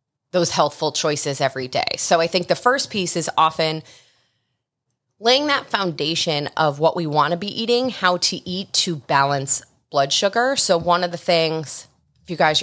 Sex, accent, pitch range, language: female, American, 145-180 Hz, English